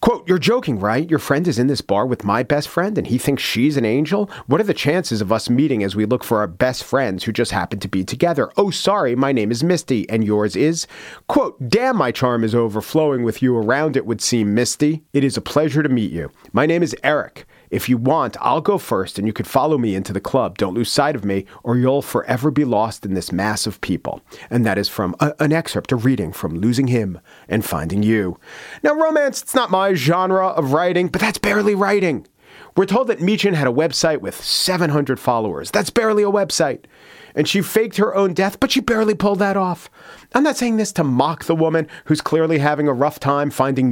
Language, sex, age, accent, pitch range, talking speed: English, male, 40-59, American, 125-185 Hz, 230 wpm